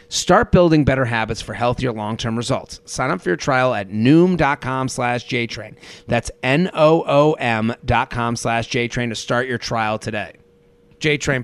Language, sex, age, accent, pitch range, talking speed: English, male, 30-49, American, 120-145 Hz, 150 wpm